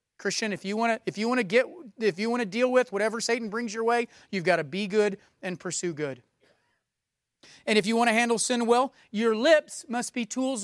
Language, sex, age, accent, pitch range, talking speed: English, male, 30-49, American, 195-250 Hz, 220 wpm